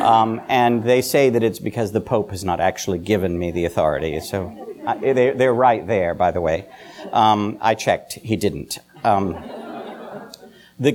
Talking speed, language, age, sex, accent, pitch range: 165 wpm, English, 50-69, male, American, 100-140 Hz